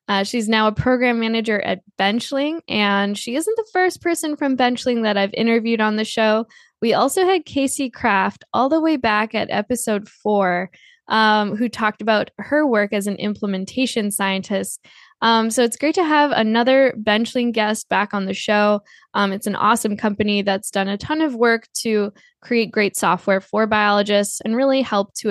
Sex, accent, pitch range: female, American, 205-255 Hz